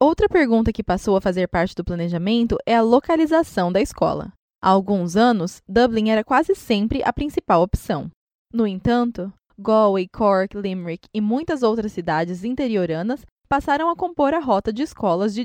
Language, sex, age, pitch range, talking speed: Portuguese, female, 20-39, 195-265 Hz, 165 wpm